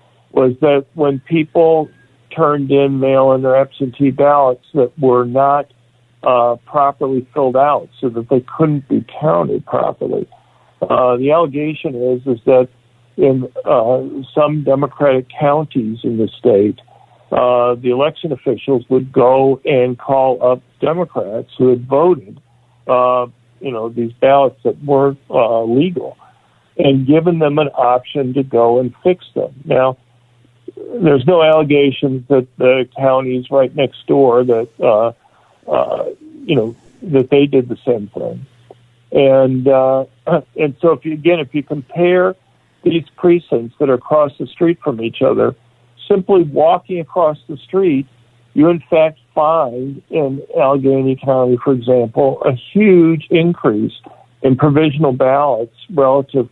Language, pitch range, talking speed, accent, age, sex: English, 125-150 Hz, 140 wpm, American, 50-69, male